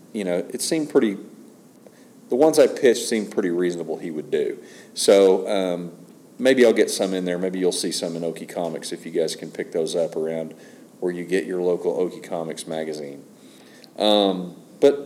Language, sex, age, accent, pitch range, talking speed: English, male, 40-59, American, 90-120 Hz, 190 wpm